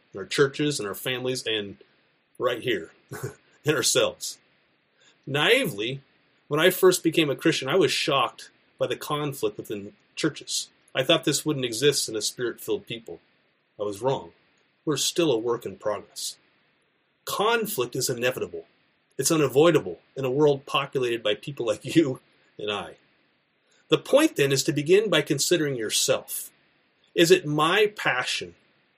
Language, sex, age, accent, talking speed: English, male, 30-49, American, 150 wpm